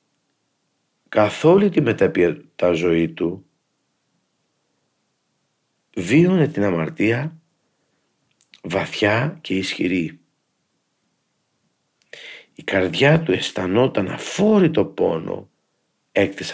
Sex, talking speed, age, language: male, 70 wpm, 50-69, Greek